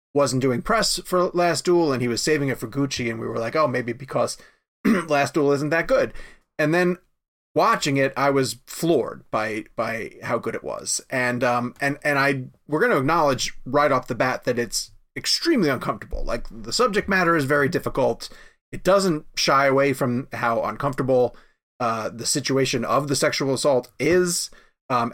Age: 30-49